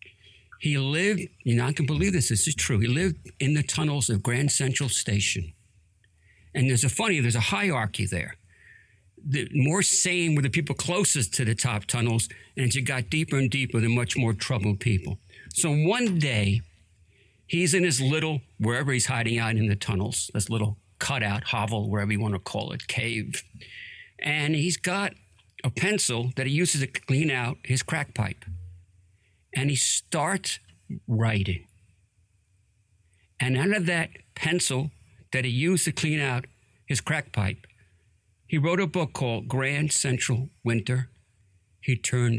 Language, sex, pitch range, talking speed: English, male, 105-140 Hz, 170 wpm